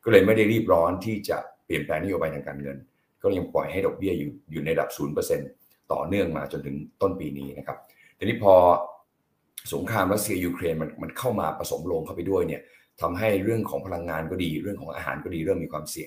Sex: male